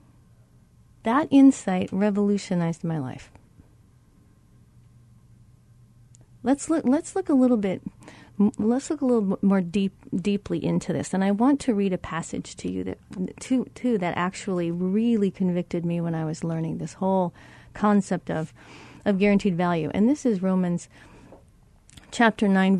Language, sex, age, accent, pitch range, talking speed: English, female, 40-59, American, 165-220 Hz, 140 wpm